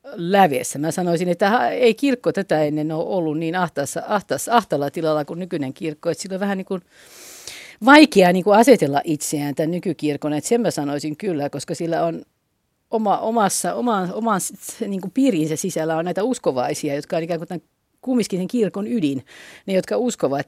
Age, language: 50-69, Finnish